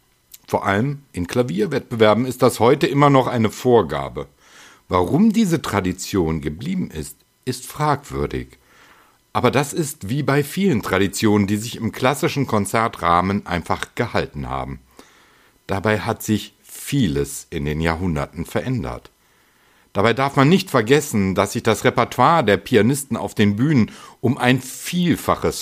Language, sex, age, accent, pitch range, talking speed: German, male, 60-79, German, 100-130 Hz, 135 wpm